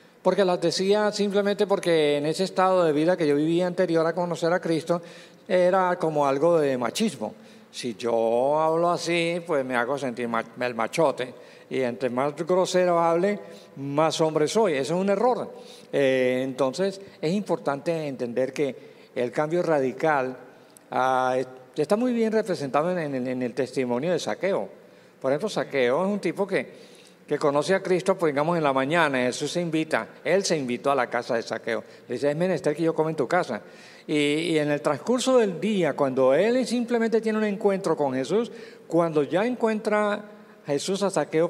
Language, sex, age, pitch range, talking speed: English, male, 50-69, 145-195 Hz, 175 wpm